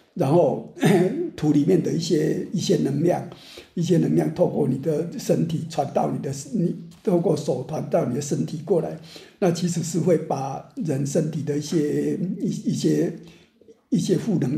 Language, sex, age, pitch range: Chinese, male, 60-79, 155-195 Hz